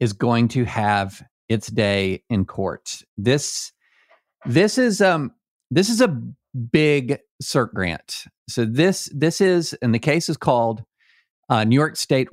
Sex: male